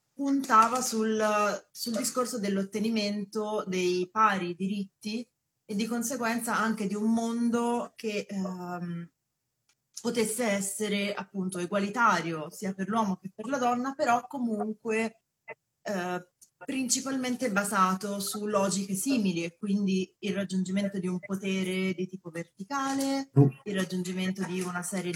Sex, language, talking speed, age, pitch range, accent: female, Italian, 120 wpm, 30-49, 180-220 Hz, native